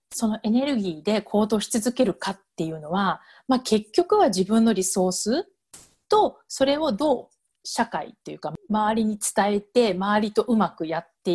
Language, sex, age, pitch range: Japanese, female, 40-59, 185-260 Hz